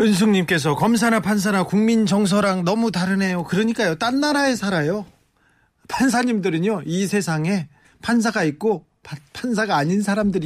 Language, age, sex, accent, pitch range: Korean, 40-59, male, native, 150-220 Hz